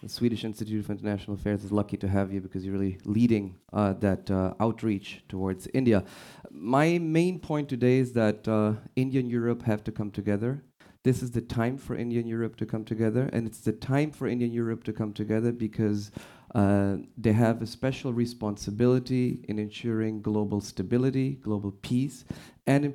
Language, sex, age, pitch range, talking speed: English, male, 30-49, 100-120 Hz, 180 wpm